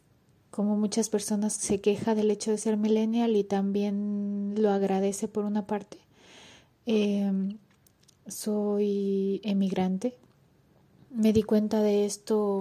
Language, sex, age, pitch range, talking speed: Spanish, female, 20-39, 185-210 Hz, 120 wpm